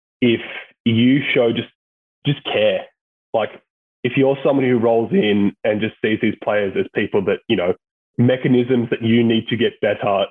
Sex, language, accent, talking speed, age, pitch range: male, English, Australian, 175 wpm, 20-39, 100-125 Hz